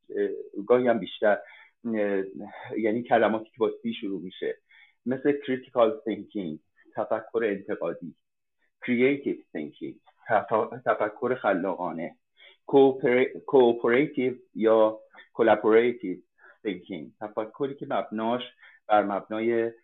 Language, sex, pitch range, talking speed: Persian, male, 110-140 Hz, 80 wpm